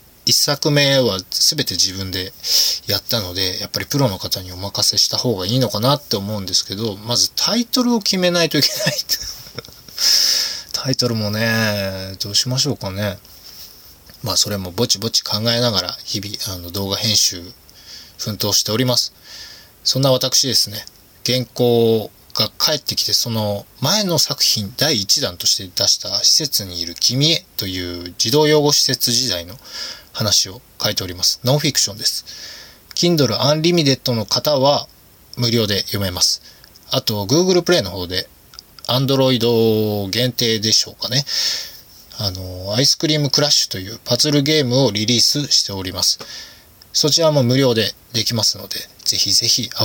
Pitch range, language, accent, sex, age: 100-135 Hz, Japanese, native, male, 20-39